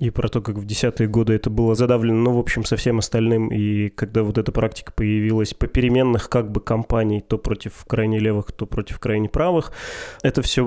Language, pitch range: Russian, 110-130 Hz